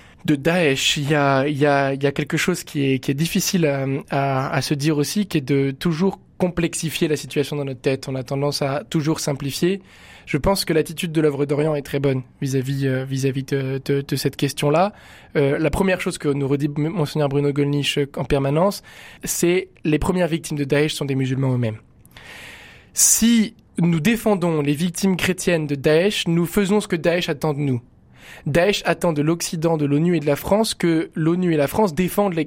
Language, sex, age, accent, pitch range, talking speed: French, male, 20-39, French, 145-185 Hz, 205 wpm